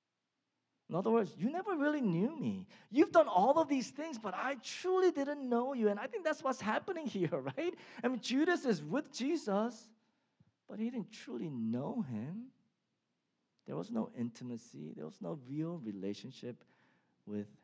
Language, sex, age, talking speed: English, male, 40-59, 170 wpm